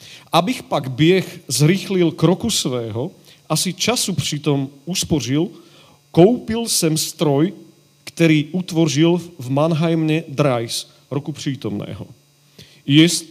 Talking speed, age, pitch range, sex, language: 100 wpm, 40-59, 130-165 Hz, male, Slovak